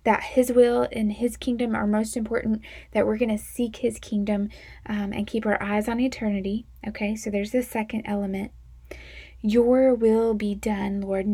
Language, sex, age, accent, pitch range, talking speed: English, female, 10-29, American, 200-235 Hz, 180 wpm